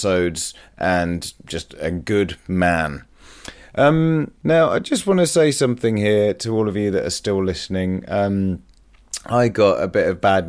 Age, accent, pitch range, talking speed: 30-49, British, 85-100 Hz, 170 wpm